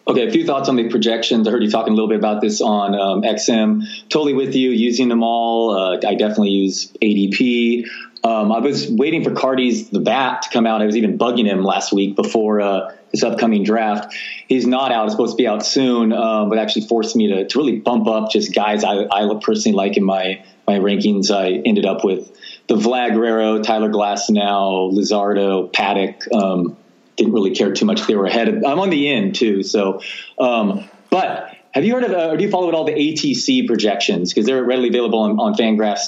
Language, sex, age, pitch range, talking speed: English, male, 30-49, 105-125 Hz, 220 wpm